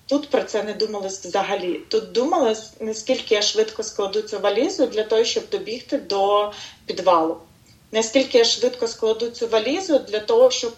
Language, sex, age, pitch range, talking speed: Ukrainian, female, 30-49, 205-255 Hz, 160 wpm